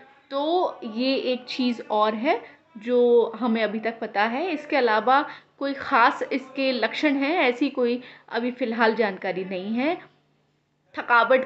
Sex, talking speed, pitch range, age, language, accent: female, 140 wpm, 220-270 Hz, 20-39, Hindi, native